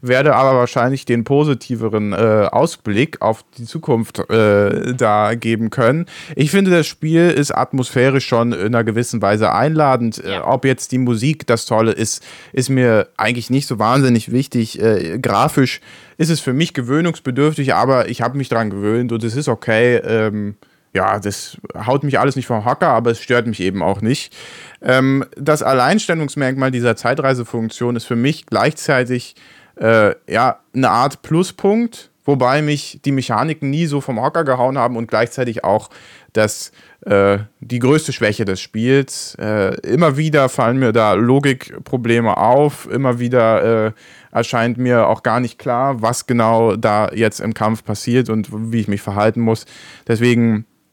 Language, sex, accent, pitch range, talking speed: German, male, German, 115-135 Hz, 160 wpm